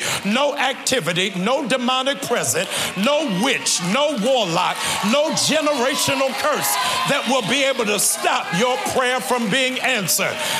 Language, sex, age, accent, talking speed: English, male, 60-79, American, 130 wpm